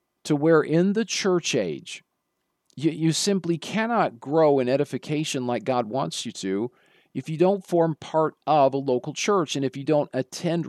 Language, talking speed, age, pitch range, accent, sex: English, 180 wpm, 40-59, 135-185 Hz, American, male